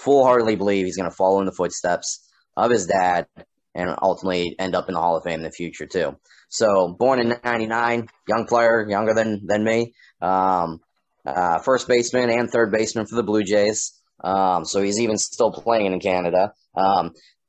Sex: male